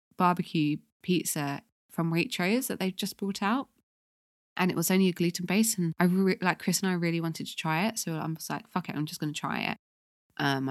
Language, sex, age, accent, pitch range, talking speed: English, female, 20-39, British, 150-190 Hz, 220 wpm